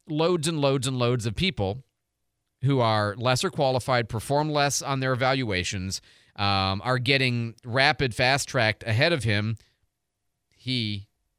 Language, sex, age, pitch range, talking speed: English, male, 40-59, 105-140 Hz, 130 wpm